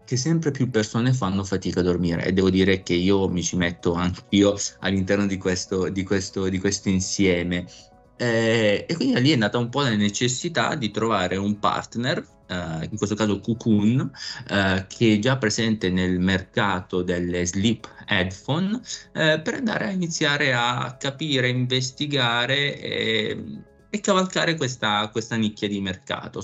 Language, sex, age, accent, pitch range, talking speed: Italian, male, 20-39, native, 90-110 Hz, 160 wpm